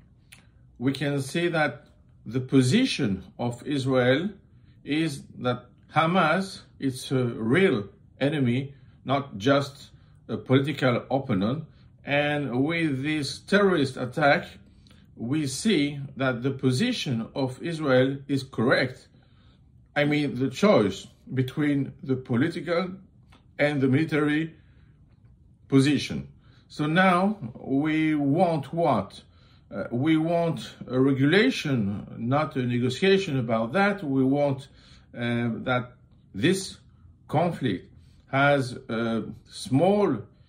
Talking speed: 100 wpm